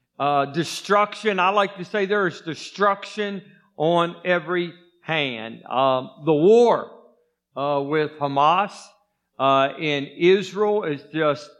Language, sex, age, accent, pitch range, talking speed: English, male, 50-69, American, 145-195 Hz, 120 wpm